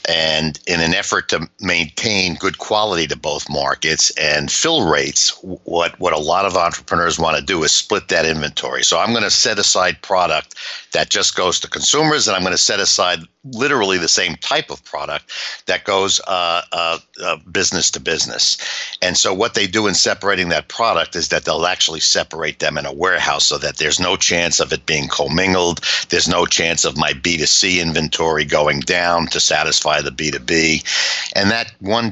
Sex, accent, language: male, American, English